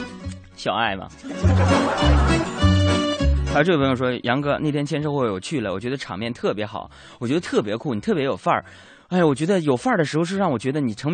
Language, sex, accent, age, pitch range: Chinese, male, native, 20-39, 115-180 Hz